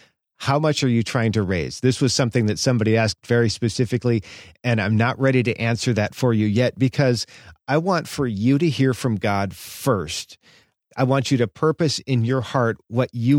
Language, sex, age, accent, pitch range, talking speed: English, male, 40-59, American, 115-135 Hz, 200 wpm